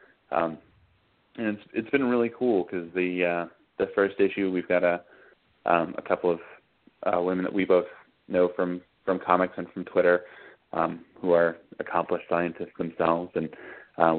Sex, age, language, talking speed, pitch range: male, 30-49, English, 170 wpm, 85-100 Hz